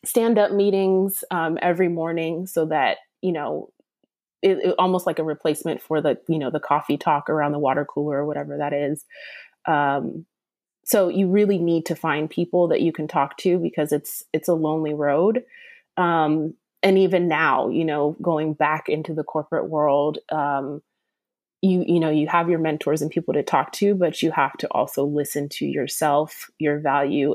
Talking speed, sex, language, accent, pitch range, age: 185 wpm, female, English, American, 150-175 Hz, 20-39